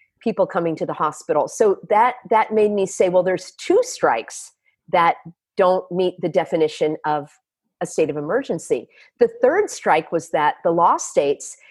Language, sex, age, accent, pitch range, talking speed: English, female, 40-59, American, 175-260 Hz, 170 wpm